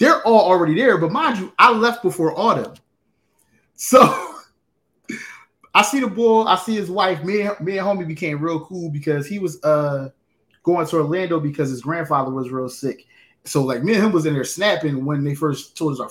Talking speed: 210 wpm